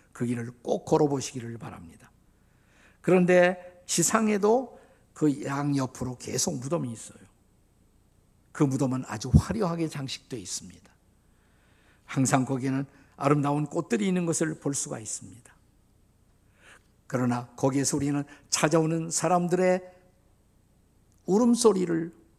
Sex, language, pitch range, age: male, Korean, 120-180 Hz, 50-69